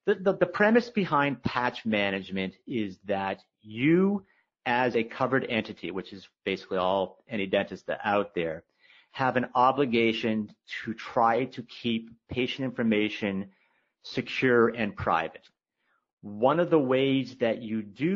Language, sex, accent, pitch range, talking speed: English, male, American, 105-120 Hz, 135 wpm